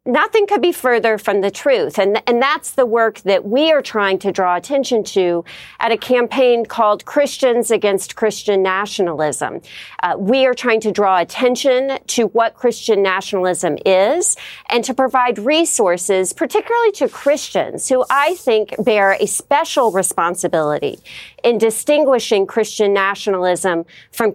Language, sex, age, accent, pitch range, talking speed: English, female, 40-59, American, 195-250 Hz, 145 wpm